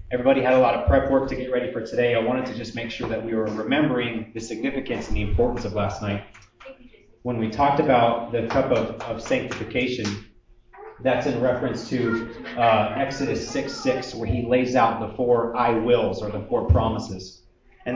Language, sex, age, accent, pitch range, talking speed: English, male, 30-49, American, 115-130 Hz, 205 wpm